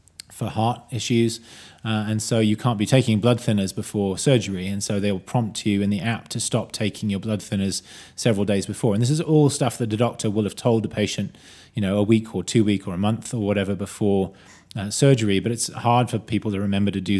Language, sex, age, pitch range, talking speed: English, male, 30-49, 100-115 Hz, 240 wpm